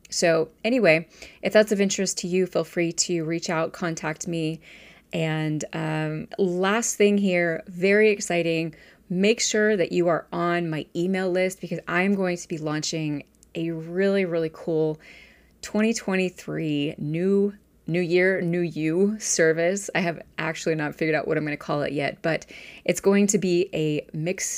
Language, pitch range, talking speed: English, 160-185 Hz, 170 wpm